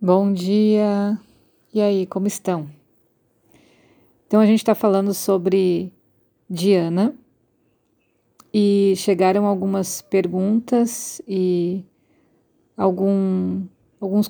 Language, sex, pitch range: Portuguese, female, 185-215 Hz